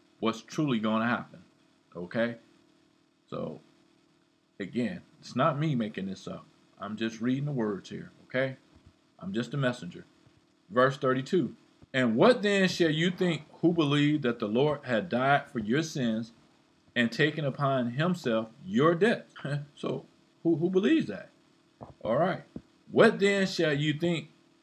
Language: English